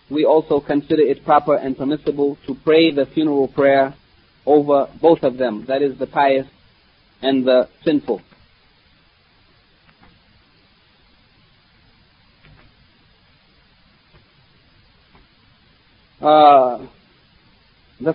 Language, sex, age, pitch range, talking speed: English, male, 30-49, 135-160 Hz, 85 wpm